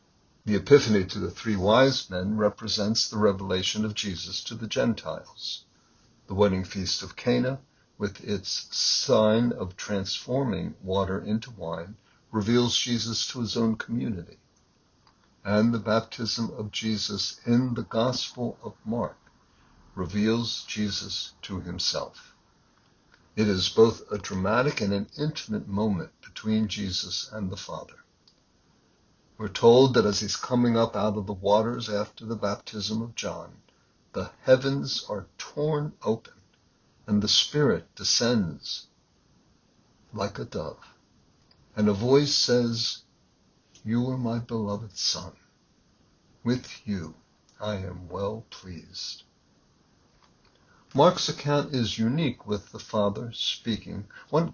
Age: 60-79